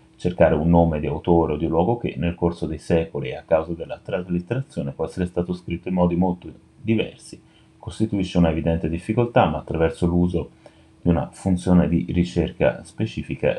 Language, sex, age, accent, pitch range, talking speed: Italian, male, 30-49, native, 80-90 Hz, 170 wpm